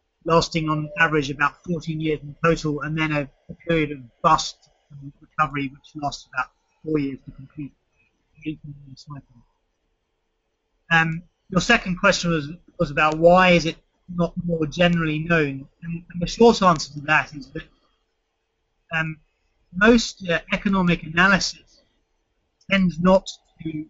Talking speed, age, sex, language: 145 wpm, 30-49, male, English